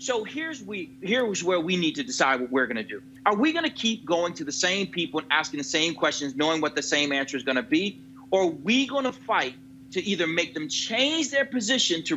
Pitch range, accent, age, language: 160-260 Hz, American, 40-59, English